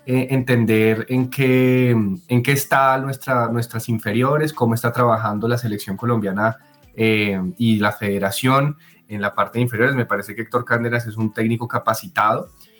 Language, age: Spanish, 20-39